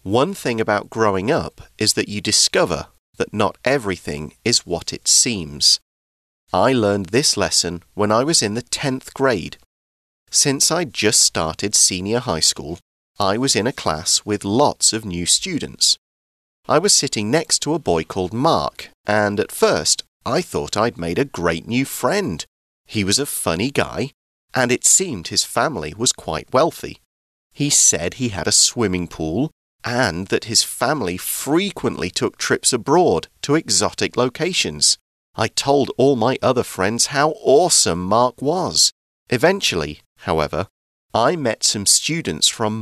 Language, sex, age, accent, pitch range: Chinese, male, 40-59, British, 85-130 Hz